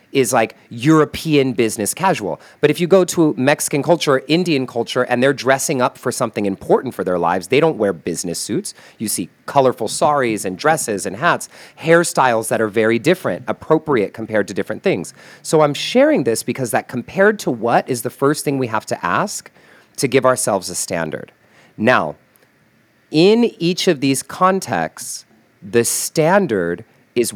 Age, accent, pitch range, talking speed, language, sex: 40-59, American, 120-165 Hz, 170 wpm, English, male